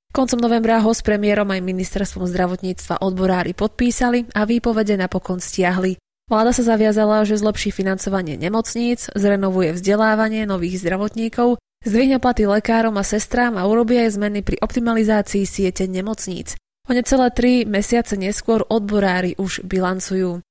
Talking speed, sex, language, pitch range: 135 wpm, female, Slovak, 190-225 Hz